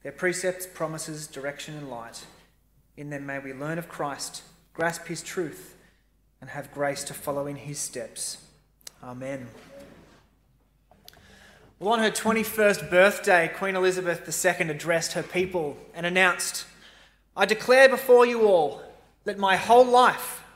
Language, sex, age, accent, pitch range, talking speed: English, male, 20-39, Australian, 170-225 Hz, 135 wpm